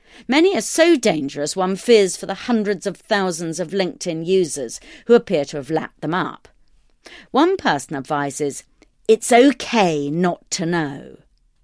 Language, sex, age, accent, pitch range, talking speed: English, female, 40-59, British, 155-235 Hz, 150 wpm